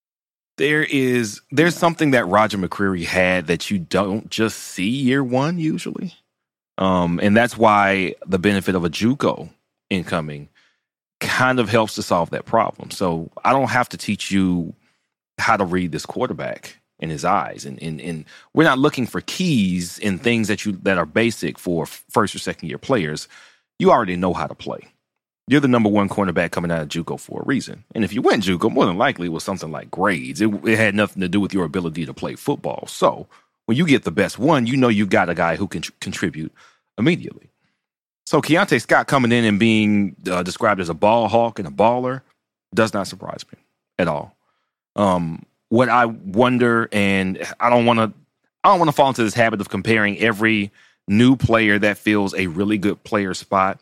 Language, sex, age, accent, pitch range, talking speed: English, male, 30-49, American, 90-120 Hz, 195 wpm